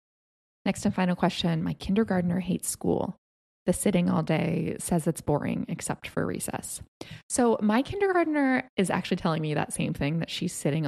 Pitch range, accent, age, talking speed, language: 165-225 Hz, American, 20-39, 170 wpm, English